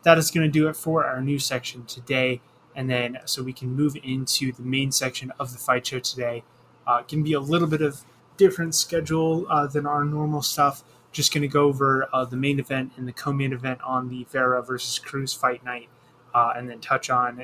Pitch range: 125-140 Hz